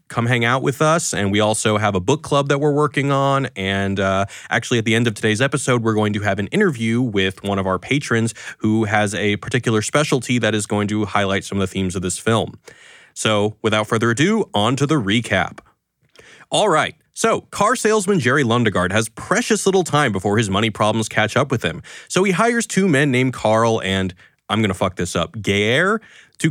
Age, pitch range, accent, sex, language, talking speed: 20-39, 105-155 Hz, American, male, English, 215 wpm